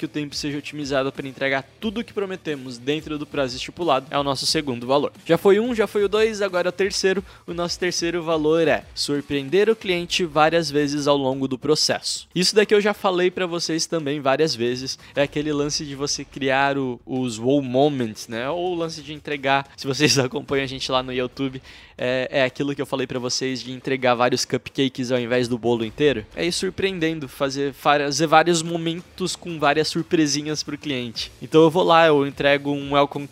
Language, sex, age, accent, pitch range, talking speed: Portuguese, male, 20-39, Brazilian, 135-165 Hz, 205 wpm